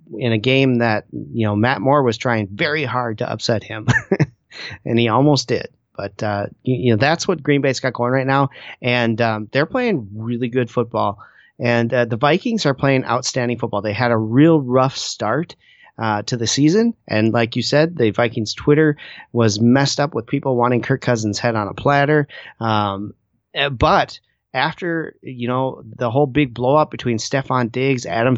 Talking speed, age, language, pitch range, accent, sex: 190 wpm, 30-49, English, 115-140 Hz, American, male